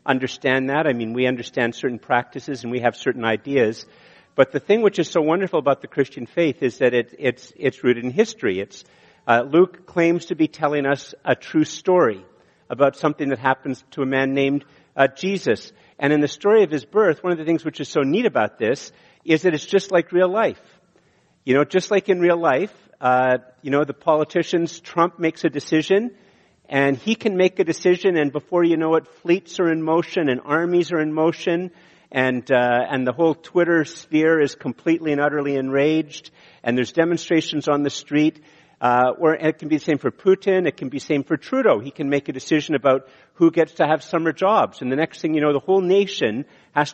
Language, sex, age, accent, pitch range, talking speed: English, male, 50-69, American, 135-170 Hz, 215 wpm